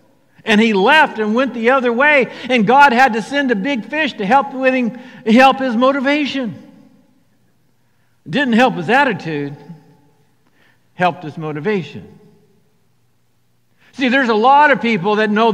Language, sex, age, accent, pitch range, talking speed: English, male, 60-79, American, 150-235 Hz, 150 wpm